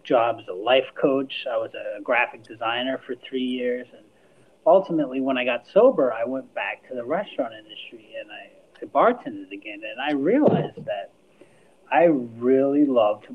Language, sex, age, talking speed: English, male, 30-49, 170 wpm